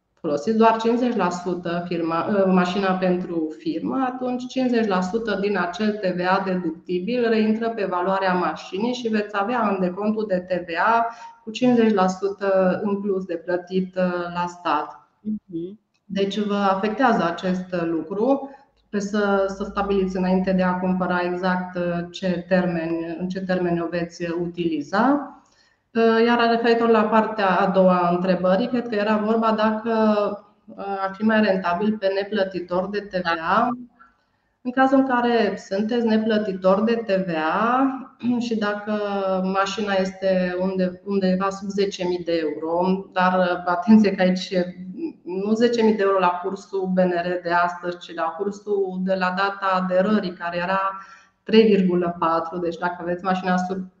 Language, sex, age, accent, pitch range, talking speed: Romanian, female, 30-49, native, 180-215 Hz, 130 wpm